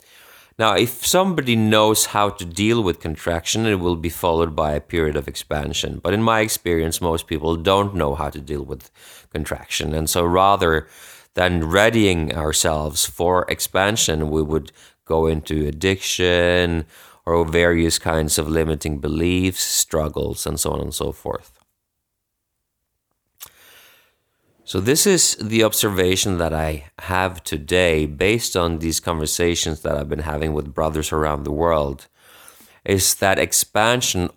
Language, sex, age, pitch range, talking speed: English, male, 30-49, 80-95 Hz, 145 wpm